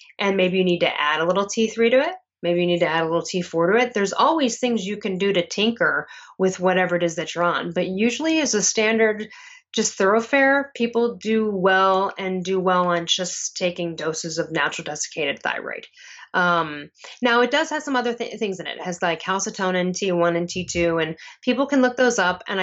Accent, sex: American, female